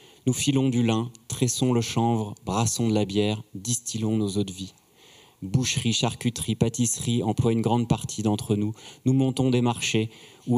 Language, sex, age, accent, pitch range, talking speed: French, male, 30-49, French, 110-130 Hz, 170 wpm